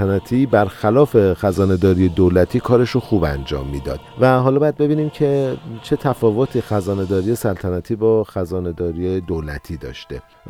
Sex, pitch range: male, 105-130 Hz